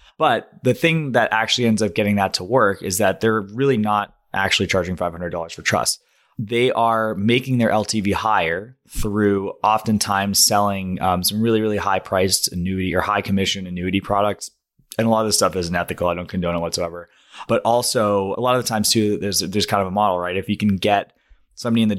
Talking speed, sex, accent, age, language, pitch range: 205 wpm, male, American, 20-39, English, 95-115 Hz